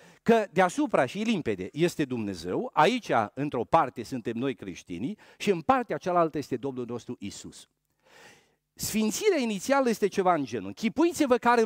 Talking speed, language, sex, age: 145 wpm, Romanian, male, 50-69